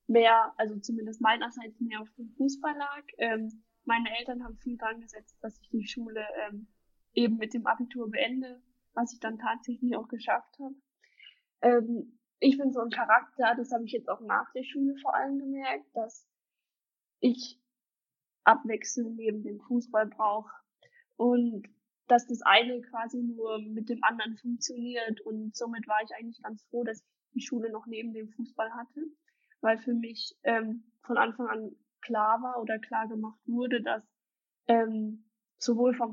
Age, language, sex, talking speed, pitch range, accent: 10-29, German, female, 165 wpm, 220-245 Hz, German